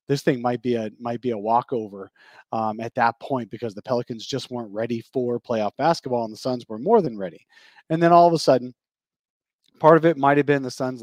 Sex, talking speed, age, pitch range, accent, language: male, 230 wpm, 30-49, 110-140 Hz, American, English